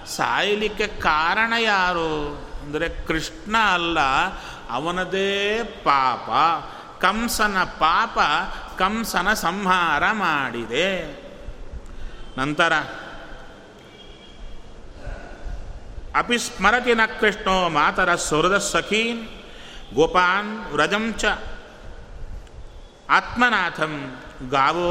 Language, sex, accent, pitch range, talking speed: Kannada, male, native, 155-210 Hz, 55 wpm